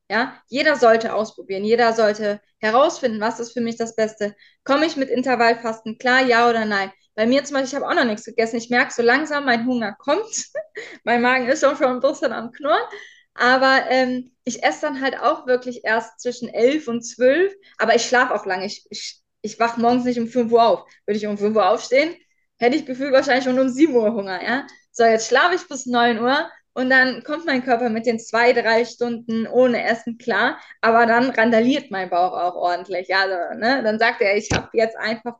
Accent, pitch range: German, 225-260 Hz